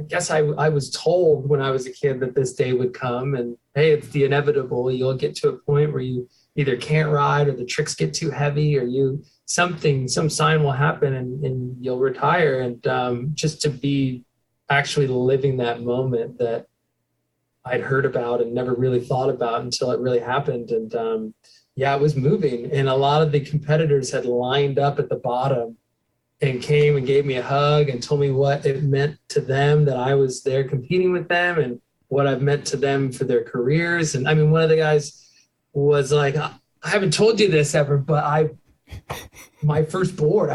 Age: 20-39